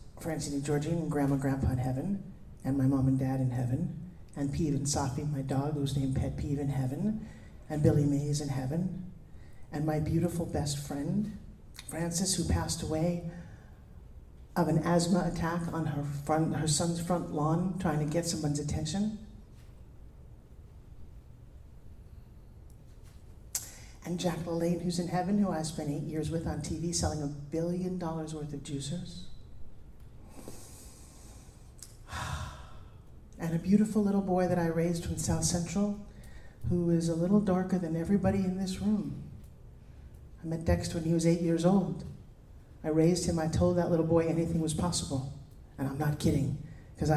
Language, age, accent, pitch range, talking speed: English, 50-69, American, 140-170 Hz, 160 wpm